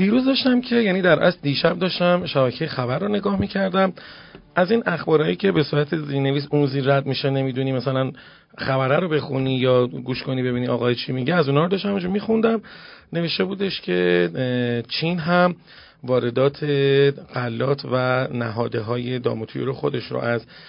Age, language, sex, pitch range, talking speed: 40-59, Persian, male, 125-165 Hz, 155 wpm